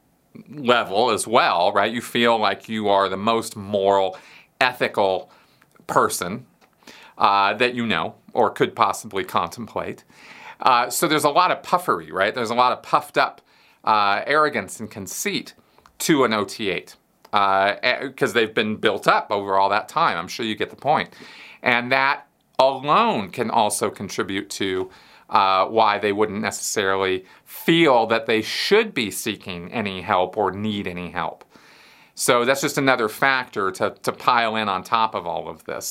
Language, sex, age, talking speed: English, male, 40-59, 165 wpm